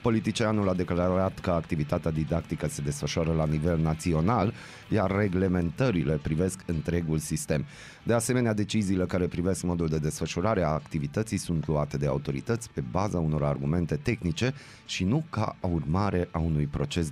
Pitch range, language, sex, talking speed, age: 80-110 Hz, Romanian, male, 145 wpm, 30-49